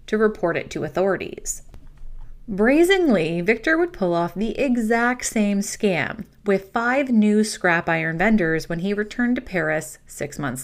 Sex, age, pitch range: female, 30-49, 170-230 Hz